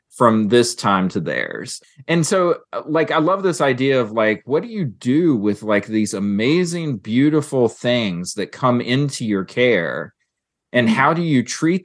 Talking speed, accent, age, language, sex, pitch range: 170 wpm, American, 30-49, English, male, 105-135 Hz